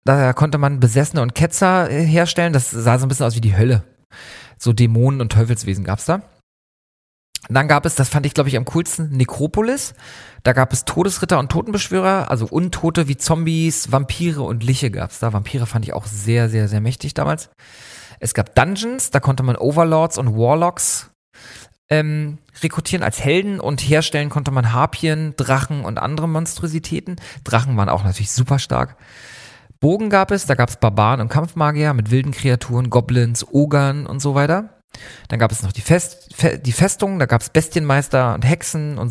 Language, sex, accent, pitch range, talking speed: English, male, German, 120-155 Hz, 180 wpm